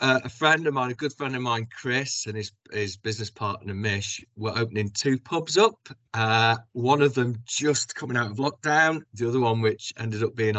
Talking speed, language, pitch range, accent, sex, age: 215 wpm, English, 105-135 Hz, British, male, 40-59